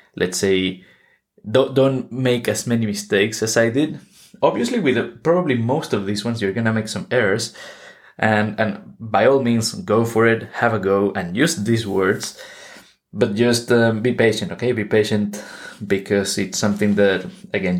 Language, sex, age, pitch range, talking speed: English, male, 20-39, 105-130 Hz, 180 wpm